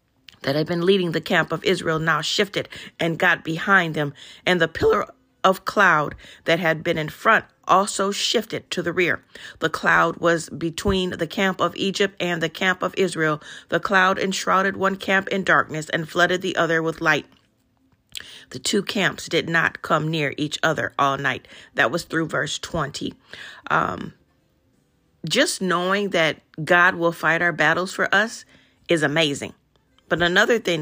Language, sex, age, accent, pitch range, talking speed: English, female, 40-59, American, 160-190 Hz, 170 wpm